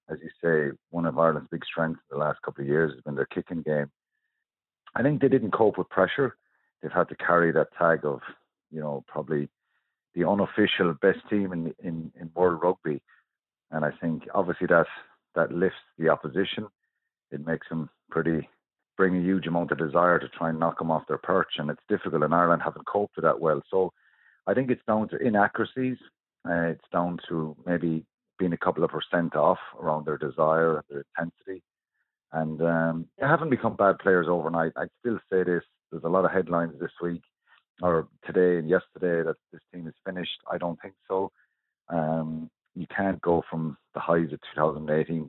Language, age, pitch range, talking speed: English, 50-69, 80-95 Hz, 195 wpm